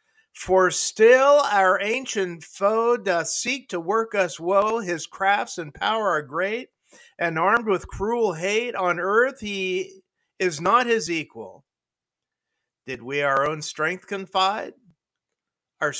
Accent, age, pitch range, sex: American, 50-69, 150-215 Hz, male